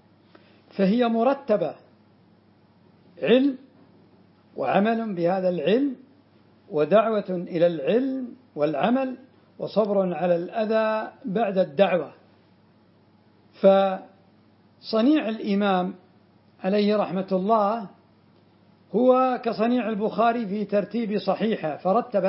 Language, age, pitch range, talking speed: Arabic, 60-79, 180-220 Hz, 75 wpm